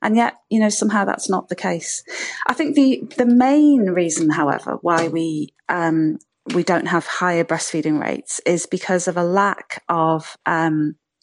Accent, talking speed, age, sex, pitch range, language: British, 180 wpm, 40-59, female, 160-195 Hz, English